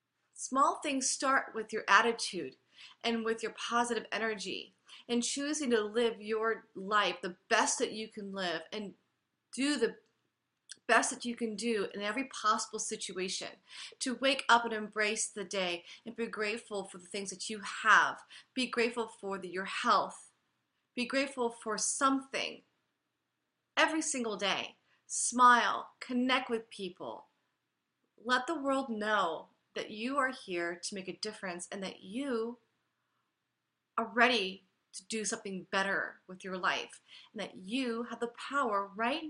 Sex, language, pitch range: female, English, 205-260 Hz